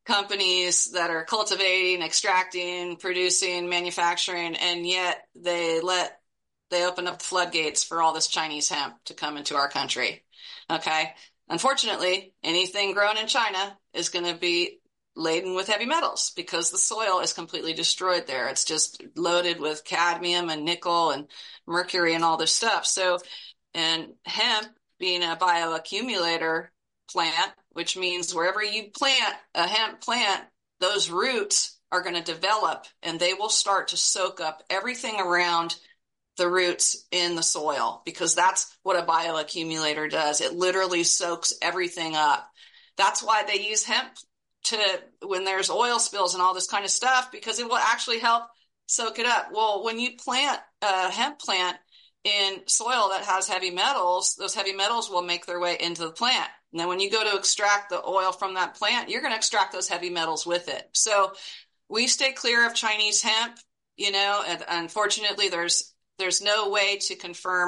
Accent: American